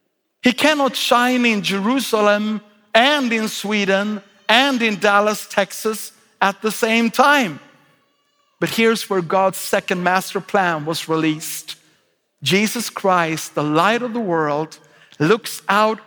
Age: 50-69